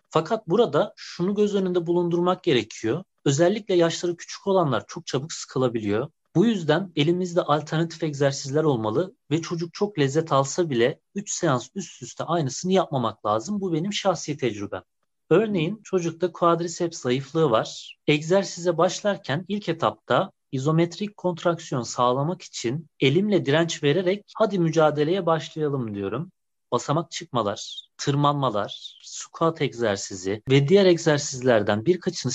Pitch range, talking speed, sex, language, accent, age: 130-175 Hz, 120 wpm, male, Turkish, native, 40-59